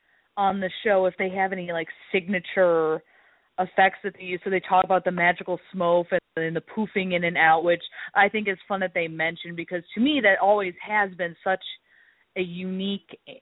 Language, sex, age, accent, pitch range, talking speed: English, female, 30-49, American, 175-225 Hz, 200 wpm